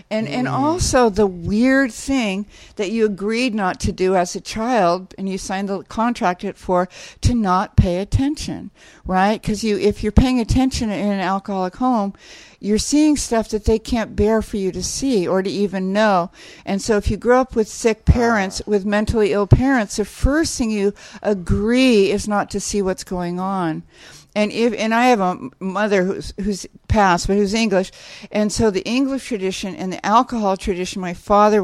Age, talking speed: 60-79, 195 wpm